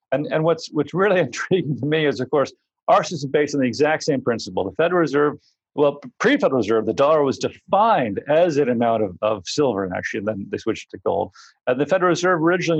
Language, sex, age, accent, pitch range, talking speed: English, male, 40-59, American, 120-155 Hz, 230 wpm